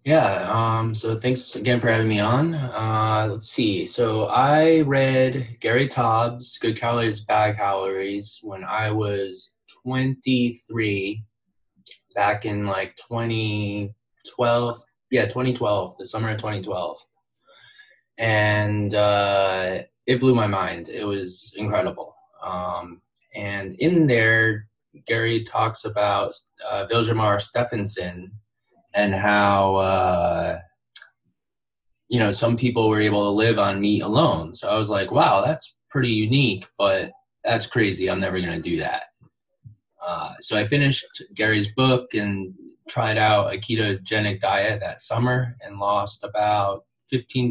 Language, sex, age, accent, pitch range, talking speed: English, male, 20-39, American, 100-120 Hz, 130 wpm